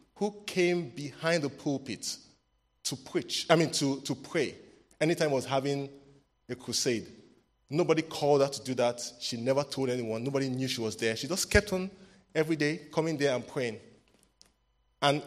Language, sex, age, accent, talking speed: English, male, 30-49, Nigerian, 170 wpm